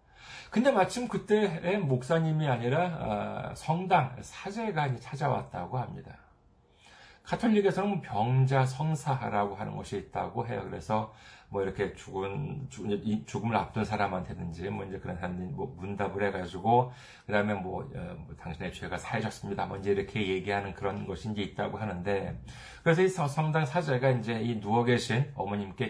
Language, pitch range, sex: Korean, 100-140 Hz, male